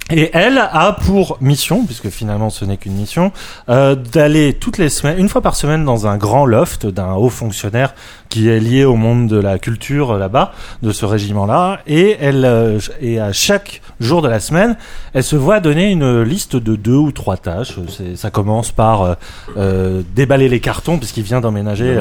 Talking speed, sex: 200 wpm, male